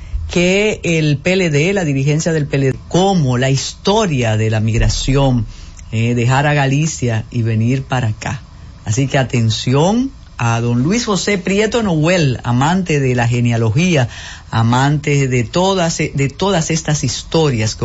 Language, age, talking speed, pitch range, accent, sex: Spanish, 50-69, 140 wpm, 115-165 Hz, American, female